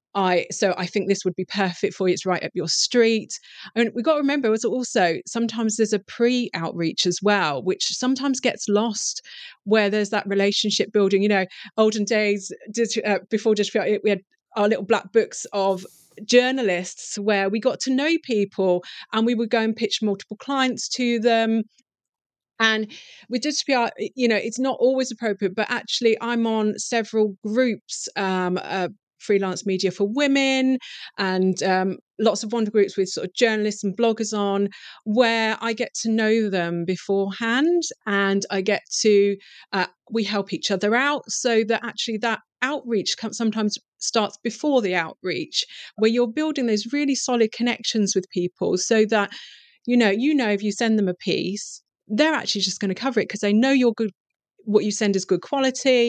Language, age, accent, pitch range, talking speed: English, 30-49, British, 200-235 Hz, 185 wpm